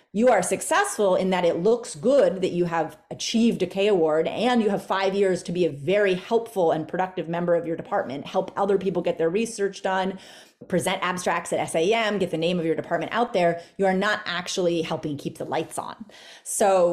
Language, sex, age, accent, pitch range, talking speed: English, female, 30-49, American, 165-205 Hz, 215 wpm